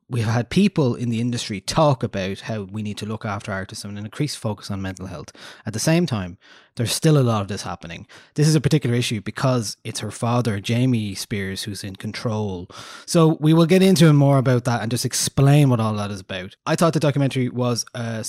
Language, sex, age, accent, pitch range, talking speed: English, male, 20-39, Irish, 110-135 Hz, 225 wpm